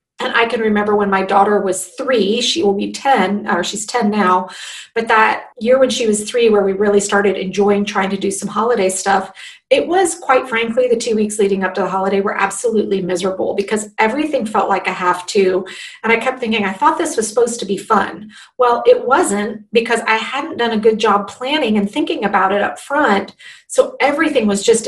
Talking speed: 215 wpm